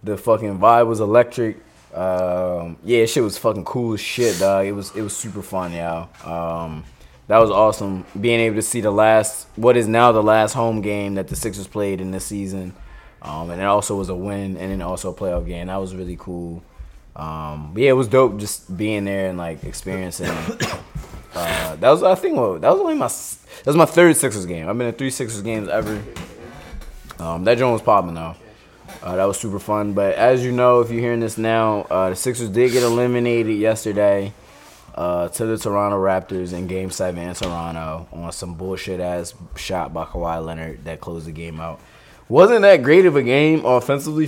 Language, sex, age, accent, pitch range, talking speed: English, male, 20-39, American, 90-115 Hz, 210 wpm